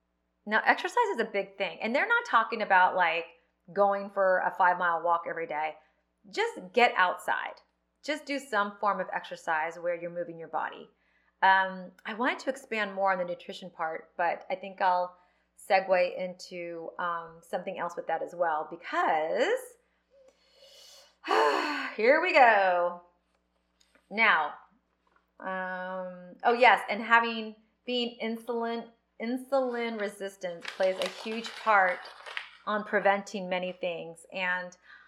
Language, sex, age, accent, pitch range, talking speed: English, female, 30-49, American, 170-215 Hz, 135 wpm